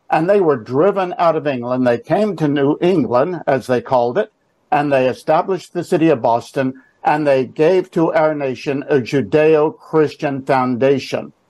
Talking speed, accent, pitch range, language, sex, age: 165 wpm, American, 135-165 Hz, English, male, 60-79